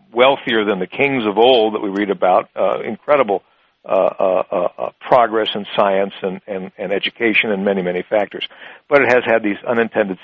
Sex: male